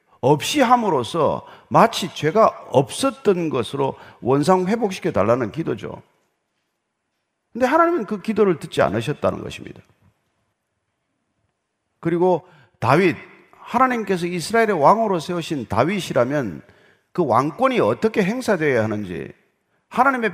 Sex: male